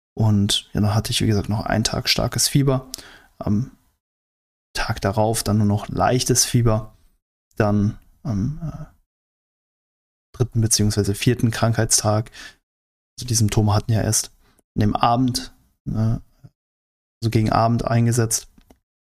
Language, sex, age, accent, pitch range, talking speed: German, male, 20-39, German, 100-115 Hz, 130 wpm